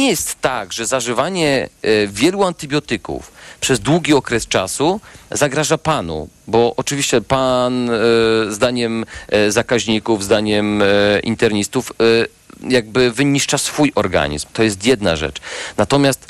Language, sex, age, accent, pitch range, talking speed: Polish, male, 40-59, native, 115-140 Hz, 105 wpm